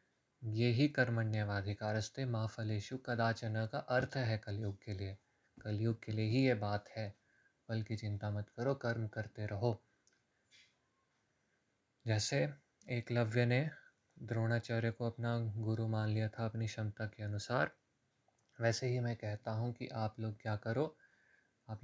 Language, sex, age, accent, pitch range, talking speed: Hindi, male, 20-39, native, 110-125 Hz, 135 wpm